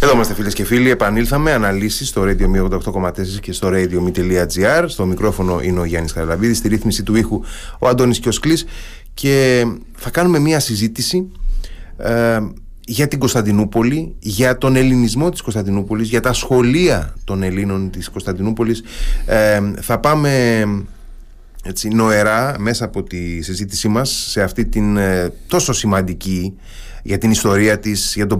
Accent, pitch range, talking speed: native, 95-120 Hz, 145 wpm